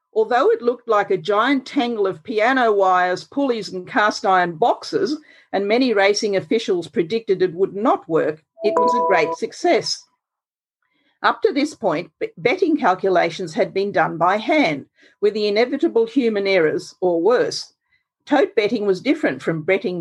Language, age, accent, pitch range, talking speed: English, 50-69, Australian, 185-295 Hz, 160 wpm